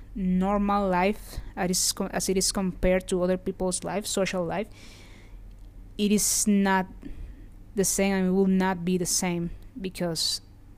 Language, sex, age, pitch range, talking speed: English, female, 20-39, 175-195 Hz, 140 wpm